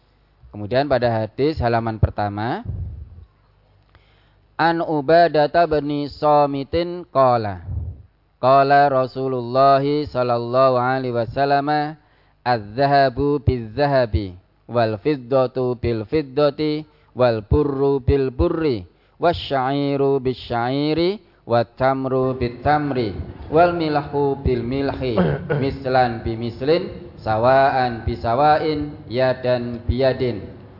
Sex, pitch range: male, 110-145 Hz